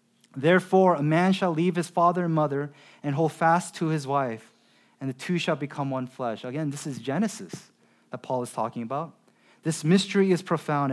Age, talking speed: 30-49, 190 wpm